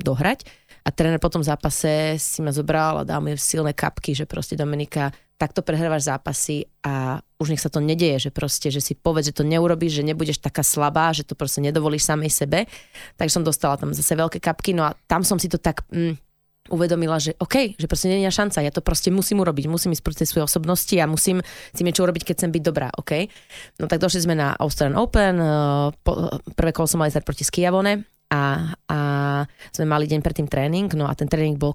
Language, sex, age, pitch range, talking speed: Slovak, female, 20-39, 145-170 Hz, 215 wpm